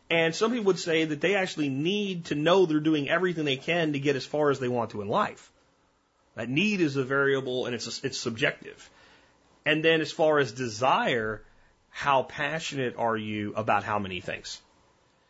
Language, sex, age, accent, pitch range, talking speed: English, male, 30-49, American, 115-155 Hz, 195 wpm